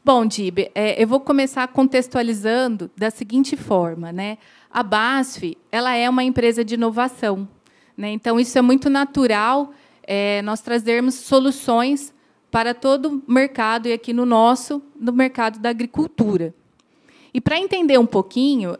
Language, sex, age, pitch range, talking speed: Portuguese, female, 20-39, 210-270 Hz, 135 wpm